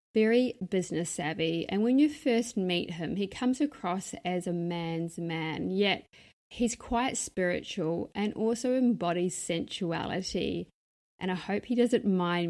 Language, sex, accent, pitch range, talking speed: English, female, Australian, 175-215 Hz, 145 wpm